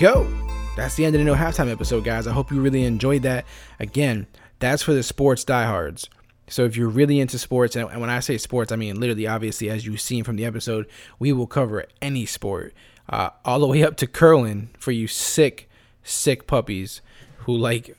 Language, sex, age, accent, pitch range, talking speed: English, male, 20-39, American, 115-140 Hz, 205 wpm